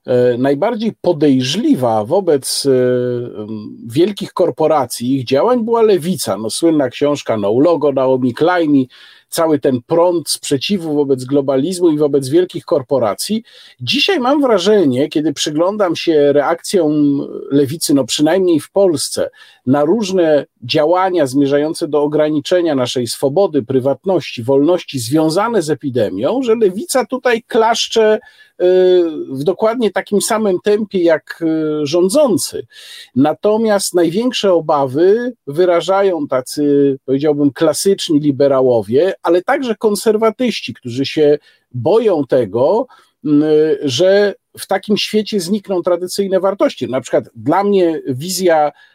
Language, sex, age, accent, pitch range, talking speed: Polish, male, 50-69, native, 145-205 Hz, 110 wpm